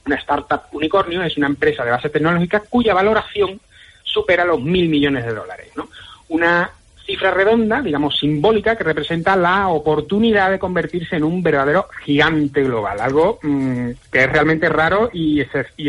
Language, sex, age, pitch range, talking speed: Spanish, male, 30-49, 145-195 Hz, 160 wpm